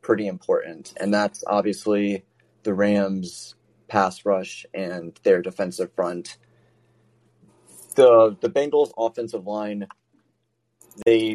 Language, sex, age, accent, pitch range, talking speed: English, male, 20-39, American, 105-120 Hz, 100 wpm